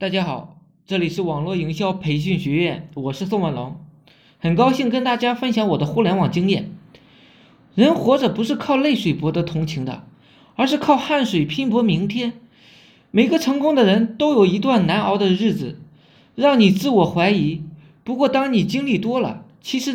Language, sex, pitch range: Chinese, male, 175-265 Hz